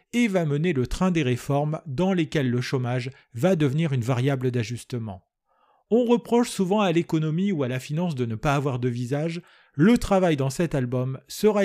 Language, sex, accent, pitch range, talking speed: French, male, French, 140-195 Hz, 190 wpm